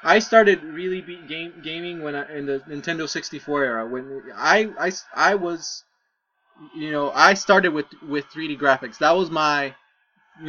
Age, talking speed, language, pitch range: 20-39, 165 wpm, English, 150-190 Hz